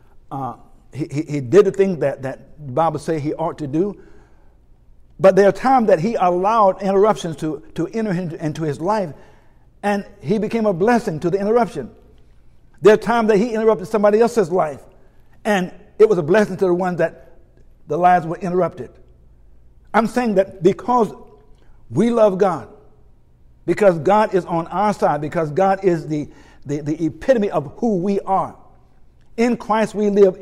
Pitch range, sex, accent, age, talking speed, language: 145-205 Hz, male, American, 60-79, 170 wpm, English